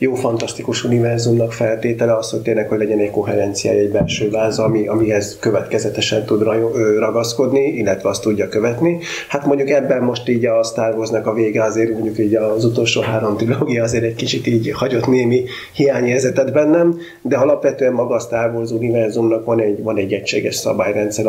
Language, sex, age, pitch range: Hungarian, male, 30-49, 105-120 Hz